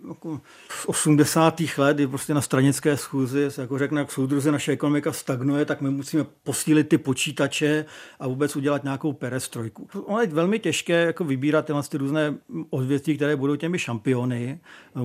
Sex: male